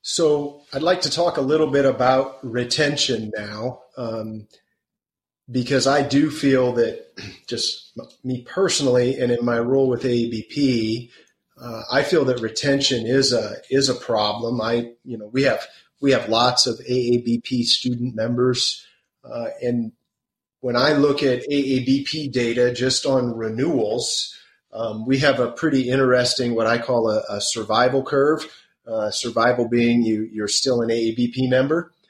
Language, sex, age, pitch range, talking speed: English, male, 30-49, 115-135 Hz, 150 wpm